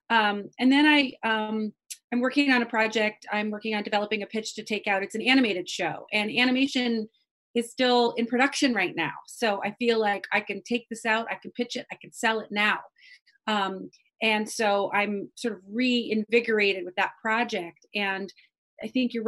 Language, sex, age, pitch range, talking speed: English, female, 30-49, 200-250 Hz, 195 wpm